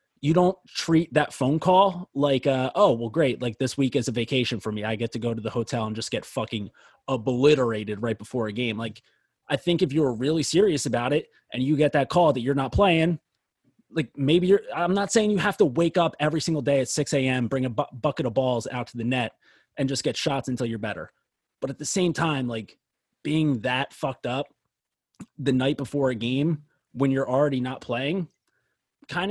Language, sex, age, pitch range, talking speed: English, male, 30-49, 120-165 Hz, 220 wpm